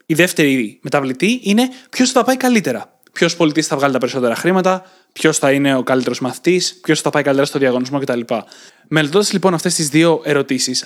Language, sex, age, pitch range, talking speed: Greek, male, 20-39, 145-185 Hz, 195 wpm